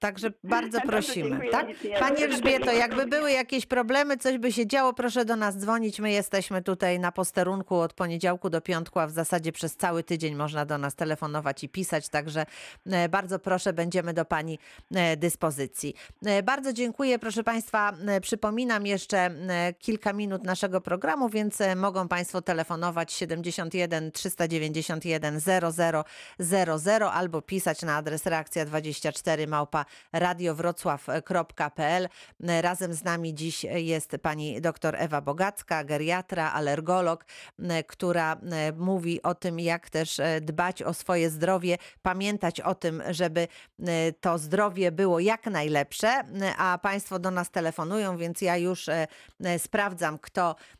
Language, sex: Polish, female